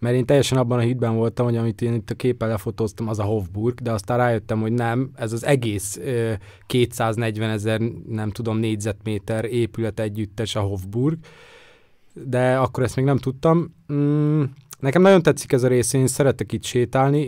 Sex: male